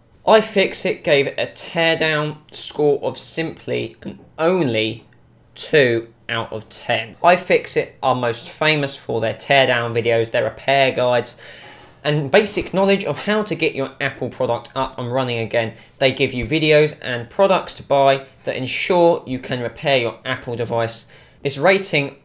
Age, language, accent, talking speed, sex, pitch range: 20-39, English, British, 155 wpm, male, 115-150 Hz